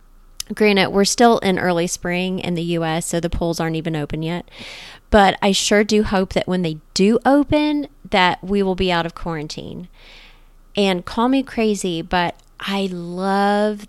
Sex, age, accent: female, 30-49, American